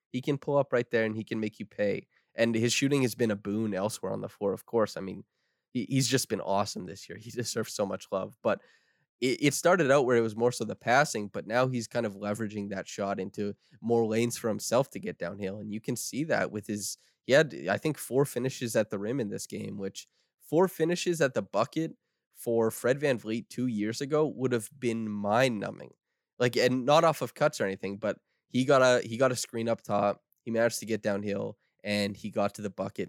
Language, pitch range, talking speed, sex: English, 105-135 Hz, 235 wpm, male